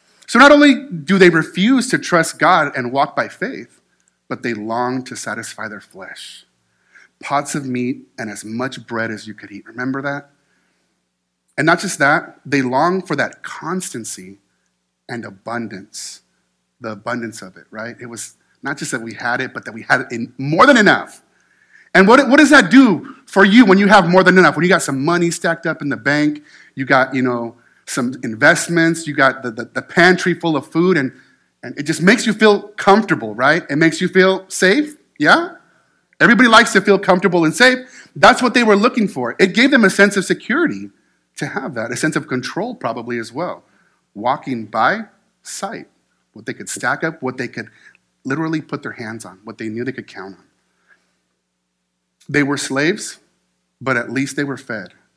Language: English